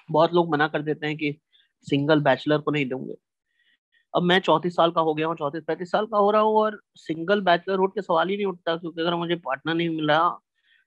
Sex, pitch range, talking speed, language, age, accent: male, 150-210 Hz, 180 wpm, Hindi, 30-49, native